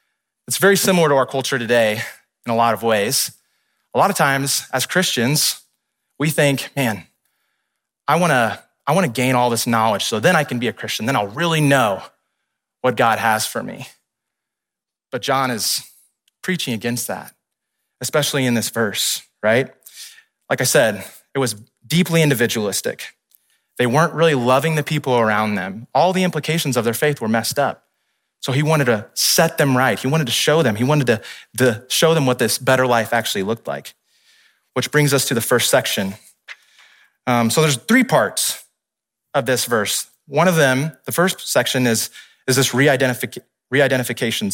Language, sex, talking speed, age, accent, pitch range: English, male, 175 wpm, 30-49, American, 115-150 Hz